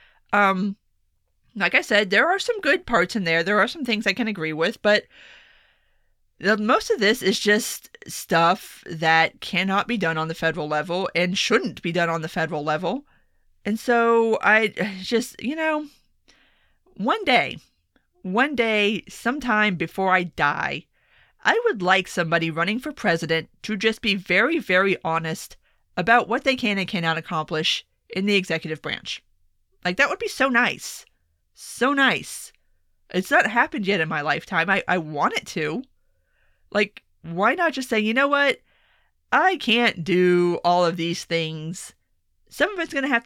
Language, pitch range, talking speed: English, 165-230 Hz, 165 wpm